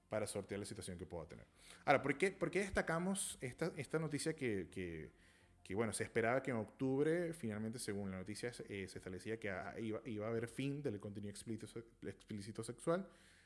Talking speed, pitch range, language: 185 wpm, 100-135 Hz, Spanish